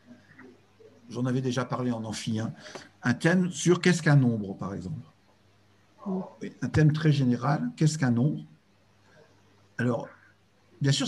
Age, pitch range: 50-69, 105-160 Hz